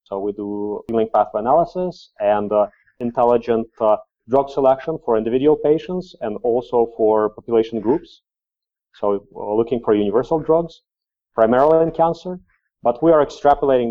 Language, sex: English, male